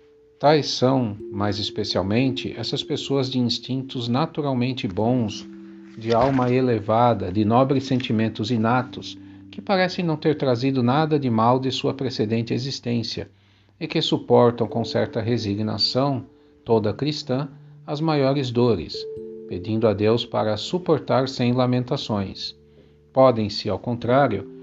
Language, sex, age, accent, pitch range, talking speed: Portuguese, male, 50-69, Brazilian, 110-135 Hz, 120 wpm